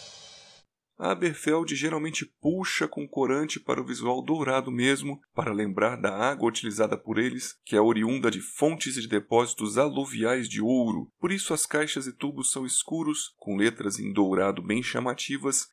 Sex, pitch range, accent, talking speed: male, 115-160 Hz, Brazilian, 165 wpm